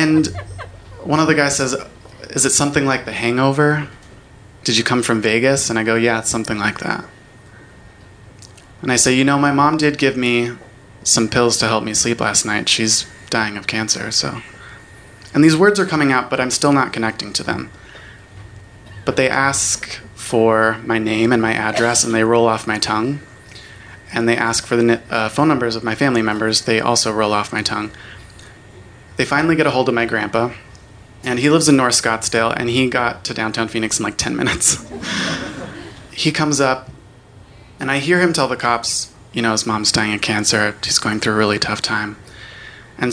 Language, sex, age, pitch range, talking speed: English, male, 20-39, 110-130 Hz, 200 wpm